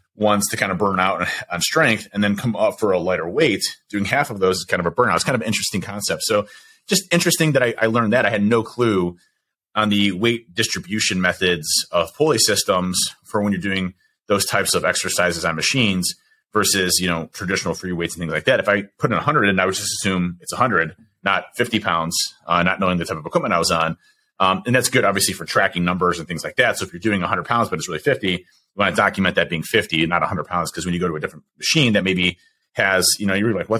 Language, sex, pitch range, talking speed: English, male, 90-120 Hz, 260 wpm